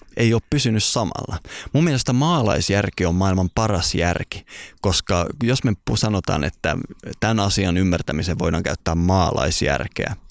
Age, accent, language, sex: 20-39, native, Finnish, male